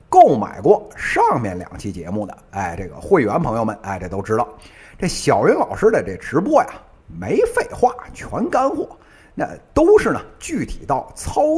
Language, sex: Chinese, male